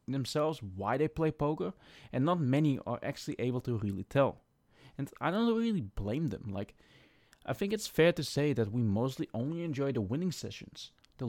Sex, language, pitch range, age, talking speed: male, English, 120-160 Hz, 20-39, 190 wpm